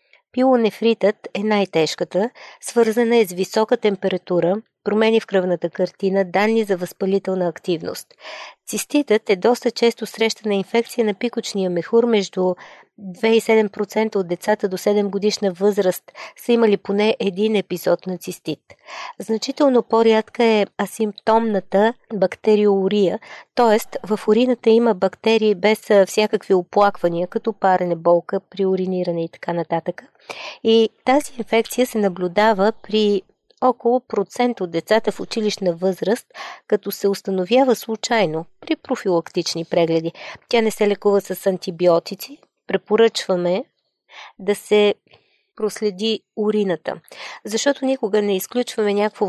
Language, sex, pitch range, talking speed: Bulgarian, female, 185-225 Hz, 120 wpm